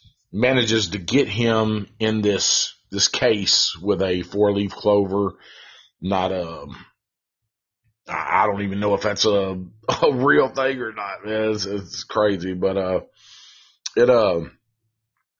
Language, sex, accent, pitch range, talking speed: English, male, American, 95-115 Hz, 130 wpm